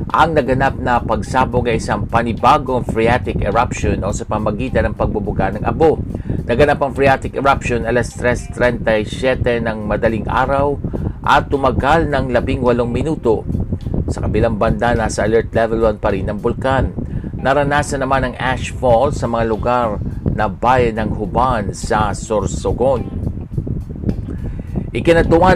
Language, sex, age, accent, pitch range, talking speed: Filipino, male, 50-69, native, 110-130 Hz, 130 wpm